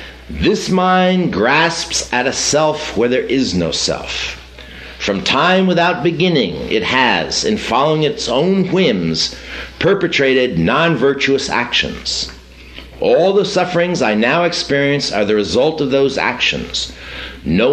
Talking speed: 130 wpm